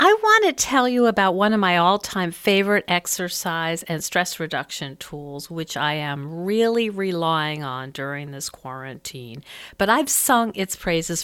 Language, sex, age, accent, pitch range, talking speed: English, female, 50-69, American, 170-220 Hz, 160 wpm